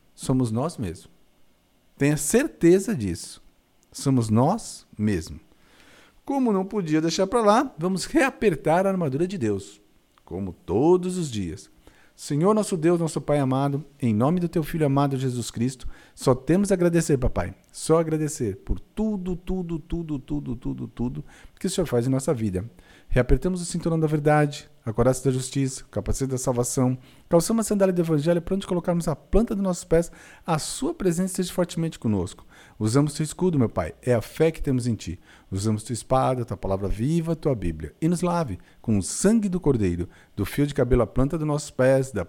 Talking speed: 185 wpm